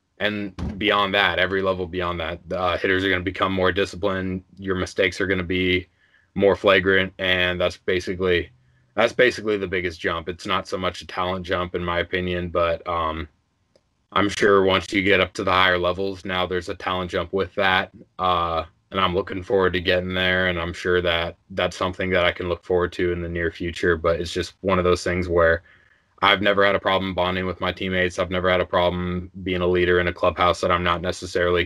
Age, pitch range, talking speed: 20-39, 85-95 Hz, 220 wpm